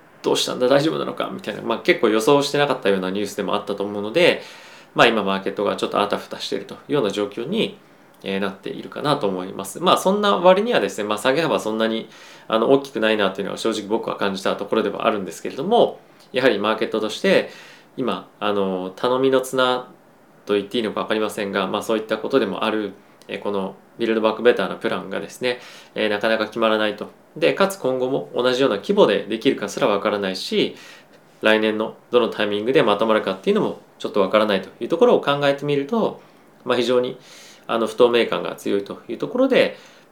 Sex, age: male, 20-39